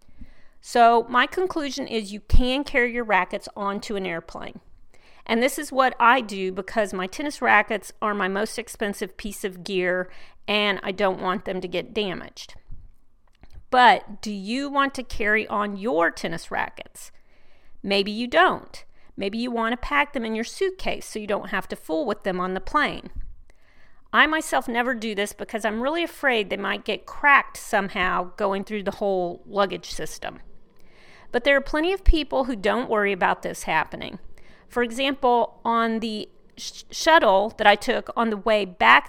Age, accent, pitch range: 40-59, American, 195-245 Hz